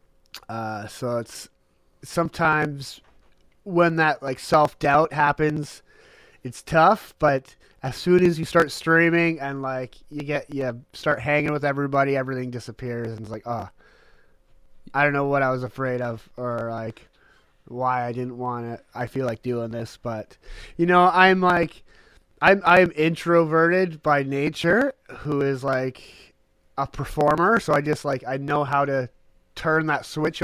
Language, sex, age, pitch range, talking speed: English, male, 30-49, 120-155 Hz, 155 wpm